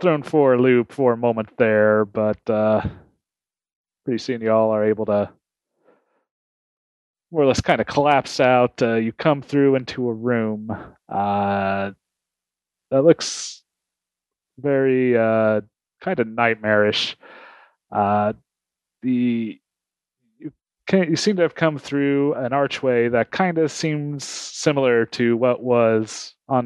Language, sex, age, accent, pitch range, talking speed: English, male, 30-49, American, 110-130 Hz, 135 wpm